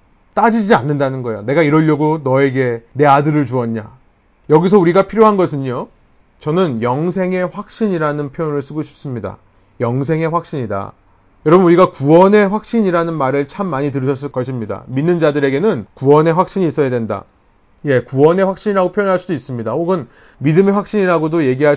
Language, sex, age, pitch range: Korean, male, 30-49, 135-195 Hz